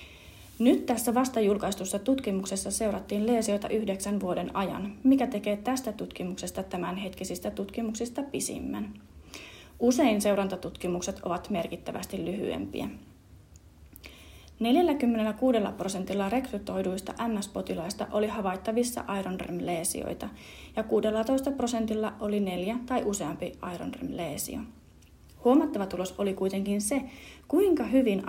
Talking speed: 90 wpm